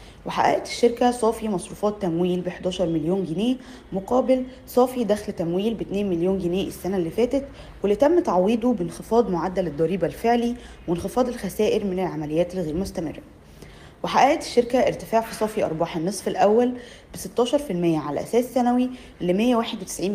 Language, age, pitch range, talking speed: Arabic, 20-39, 180-235 Hz, 145 wpm